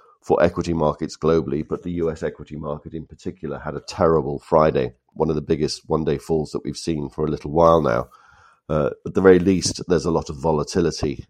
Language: English